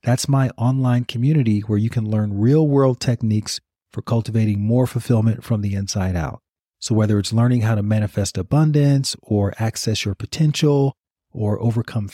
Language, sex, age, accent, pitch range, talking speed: English, male, 40-59, American, 105-130 Hz, 160 wpm